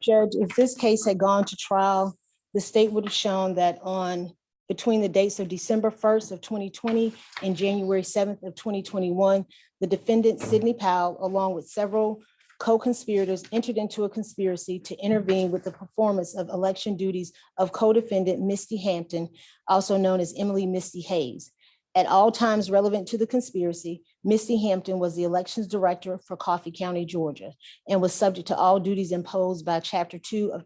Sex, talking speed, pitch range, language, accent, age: female, 170 wpm, 180-215 Hz, English, American, 40-59